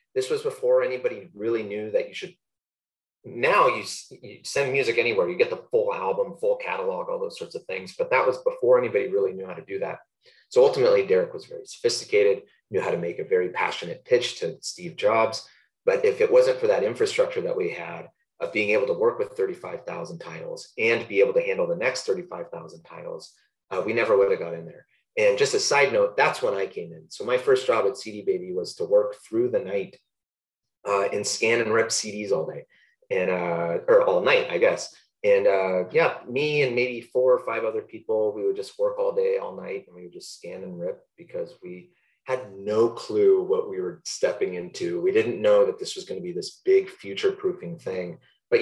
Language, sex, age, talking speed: English, male, 30-49, 220 wpm